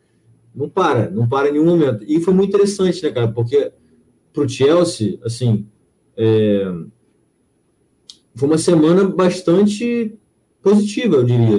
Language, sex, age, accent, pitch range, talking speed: Portuguese, male, 20-39, Brazilian, 115-155 Hz, 135 wpm